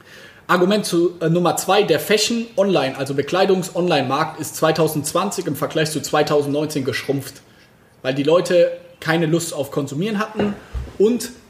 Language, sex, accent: German, male, German